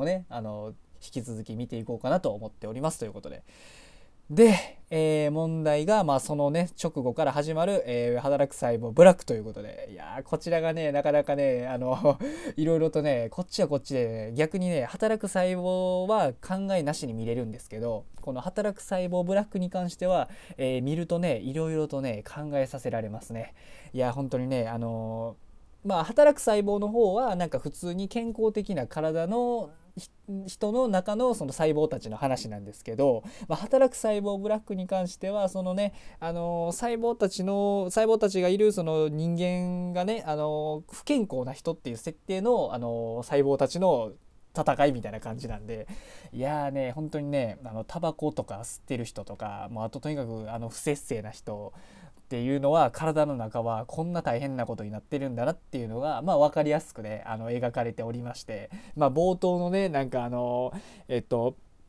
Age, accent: 20-39, native